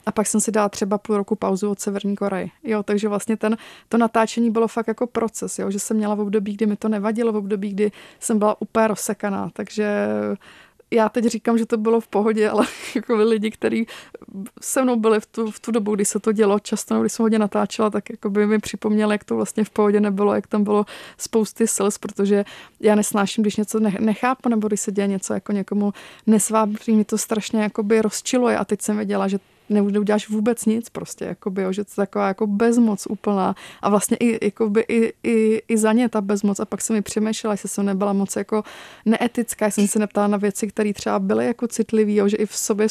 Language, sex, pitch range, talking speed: Czech, female, 210-225 Hz, 220 wpm